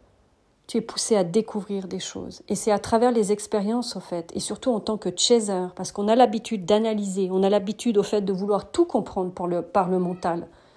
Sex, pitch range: female, 175-215 Hz